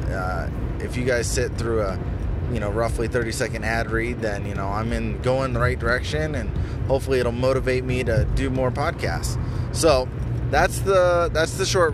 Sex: male